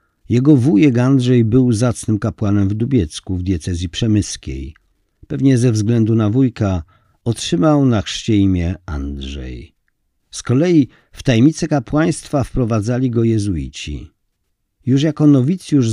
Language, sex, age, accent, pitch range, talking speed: Polish, male, 50-69, native, 100-130 Hz, 120 wpm